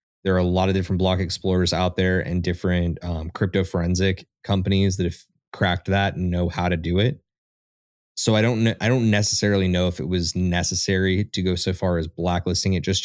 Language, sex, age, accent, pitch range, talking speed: English, male, 20-39, American, 90-100 Hz, 205 wpm